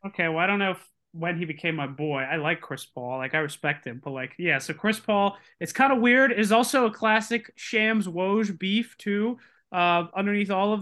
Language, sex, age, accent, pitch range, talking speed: English, male, 20-39, American, 155-205 Hz, 225 wpm